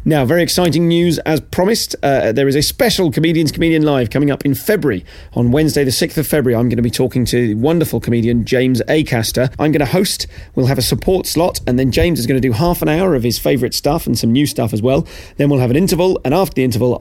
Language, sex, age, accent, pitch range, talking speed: English, male, 40-59, British, 110-145 Hz, 260 wpm